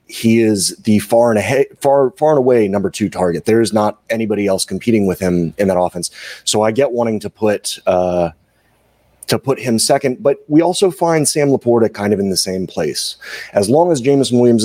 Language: English